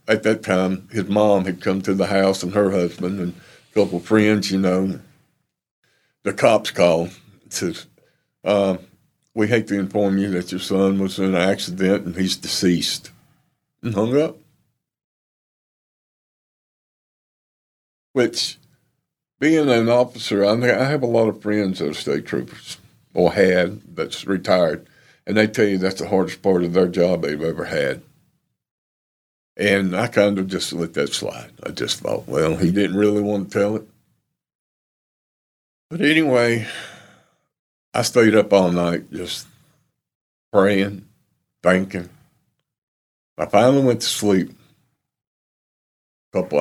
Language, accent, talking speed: English, American, 145 wpm